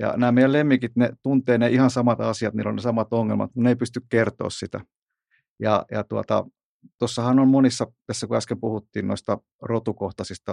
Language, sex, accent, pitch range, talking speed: Finnish, male, native, 110-125 Hz, 180 wpm